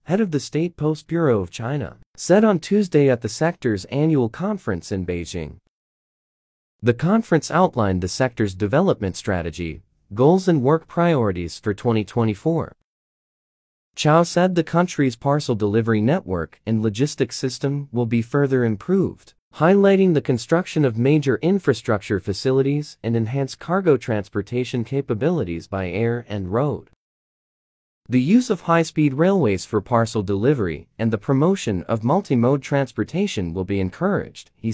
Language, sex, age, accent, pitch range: Chinese, male, 30-49, American, 105-155 Hz